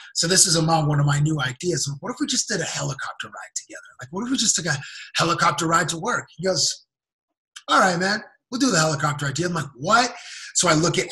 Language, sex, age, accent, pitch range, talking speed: English, male, 20-39, American, 145-190 Hz, 250 wpm